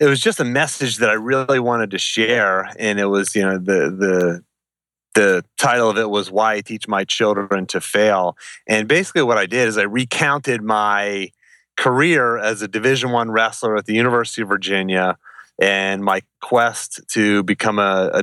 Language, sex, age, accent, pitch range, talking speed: English, male, 30-49, American, 100-120 Hz, 190 wpm